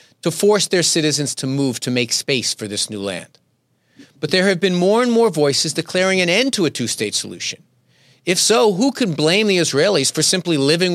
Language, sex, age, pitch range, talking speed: English, male, 40-59, 135-190 Hz, 210 wpm